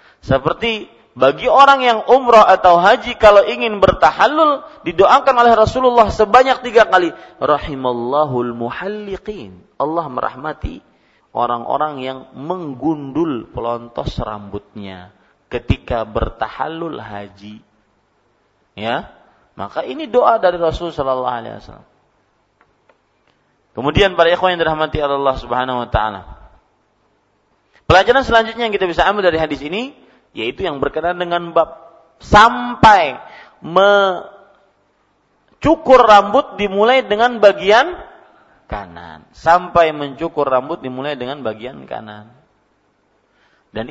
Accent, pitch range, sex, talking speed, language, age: Indonesian, 130-215 Hz, male, 100 wpm, English, 40-59